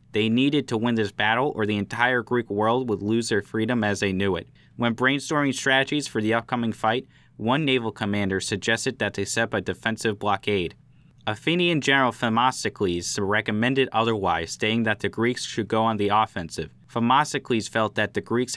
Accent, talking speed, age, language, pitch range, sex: American, 180 wpm, 20-39, English, 105-130 Hz, male